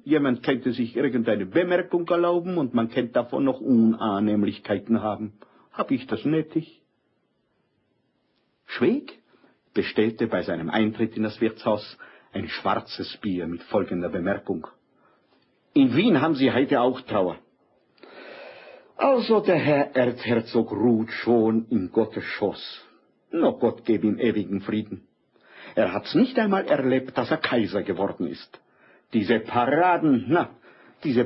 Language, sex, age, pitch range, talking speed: German, male, 50-69, 110-155 Hz, 130 wpm